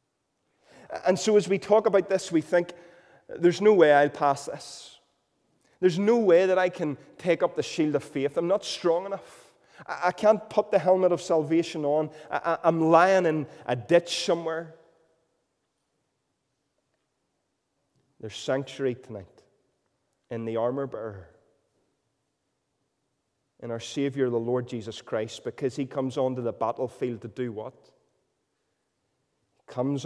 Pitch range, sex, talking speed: 135-165 Hz, male, 140 wpm